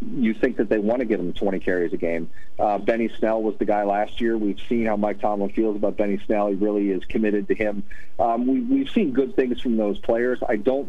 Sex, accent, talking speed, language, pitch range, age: male, American, 255 wpm, English, 100-110 Hz, 40-59